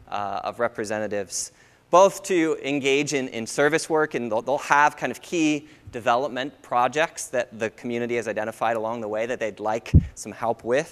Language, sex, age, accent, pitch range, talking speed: English, male, 20-39, American, 115-140 Hz, 180 wpm